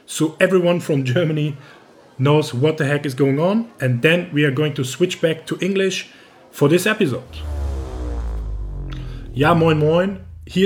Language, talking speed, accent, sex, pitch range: German, 160 wpm, German, male, 145-180 Hz